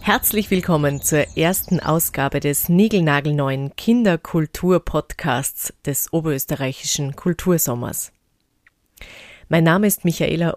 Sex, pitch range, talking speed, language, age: female, 150-195 Hz, 85 wpm, German, 30-49